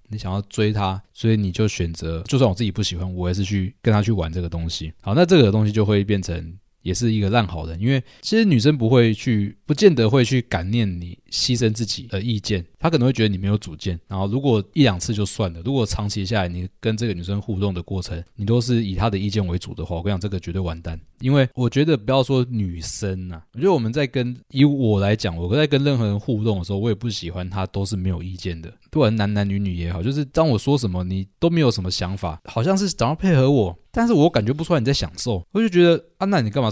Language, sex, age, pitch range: Chinese, male, 20-39, 95-130 Hz